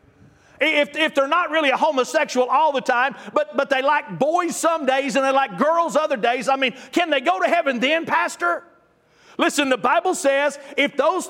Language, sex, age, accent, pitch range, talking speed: English, male, 50-69, American, 235-280 Hz, 200 wpm